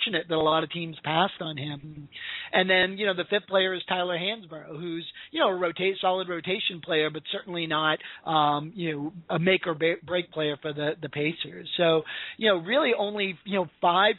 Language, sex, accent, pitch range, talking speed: English, male, American, 160-185 Hz, 205 wpm